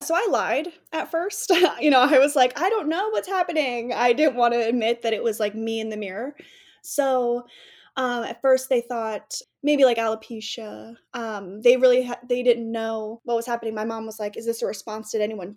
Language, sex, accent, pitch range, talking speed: English, female, American, 220-265 Hz, 215 wpm